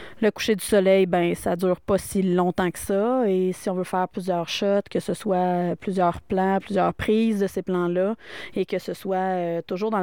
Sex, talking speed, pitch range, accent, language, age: female, 215 wpm, 180-210 Hz, Canadian, French, 30-49